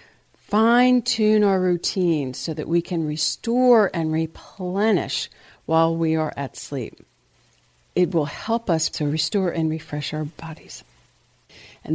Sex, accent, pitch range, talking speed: female, American, 160-210 Hz, 130 wpm